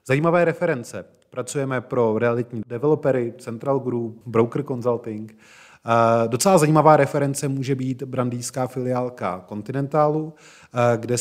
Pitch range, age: 110-135 Hz, 30-49